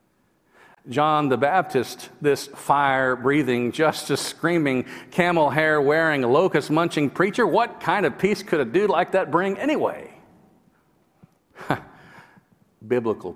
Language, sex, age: English, male, 50-69